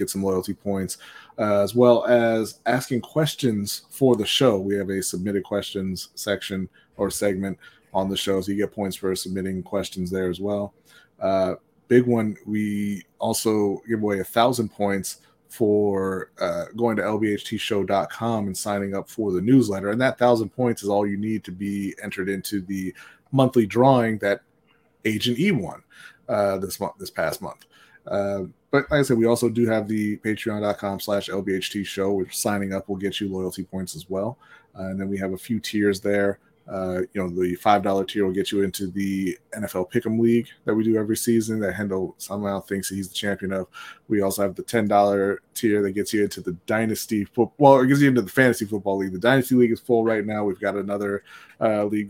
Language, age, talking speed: English, 20-39, 200 wpm